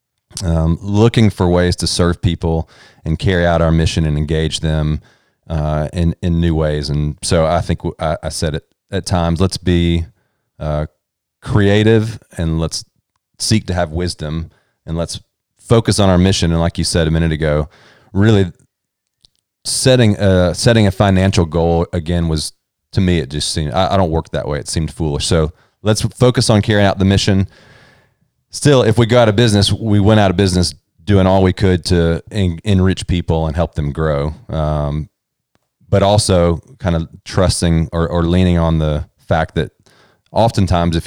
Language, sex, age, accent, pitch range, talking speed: English, male, 30-49, American, 80-105 Hz, 180 wpm